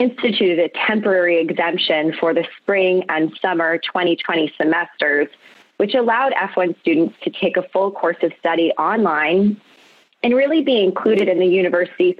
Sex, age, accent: female, 20-39, American